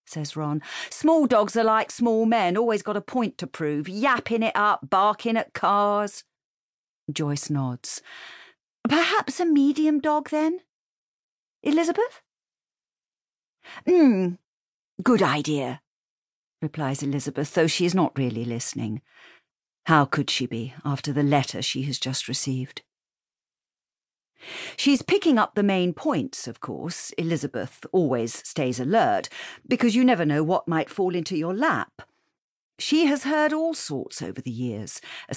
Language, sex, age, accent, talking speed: English, female, 50-69, British, 135 wpm